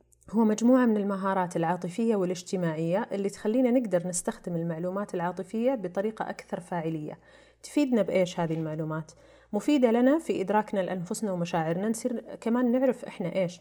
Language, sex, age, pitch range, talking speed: Arabic, female, 30-49, 175-205 Hz, 130 wpm